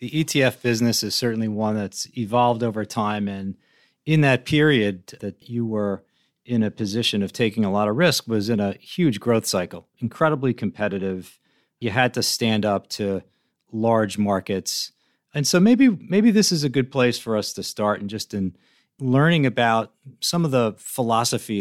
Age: 40-59